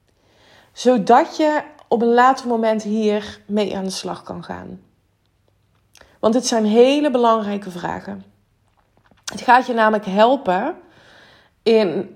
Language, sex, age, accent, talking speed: Dutch, female, 20-39, Dutch, 125 wpm